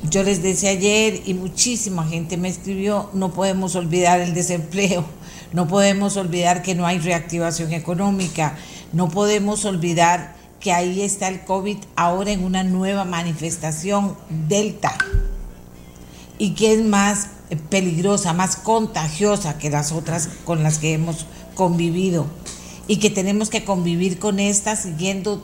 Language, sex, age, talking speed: Spanish, female, 50-69, 140 wpm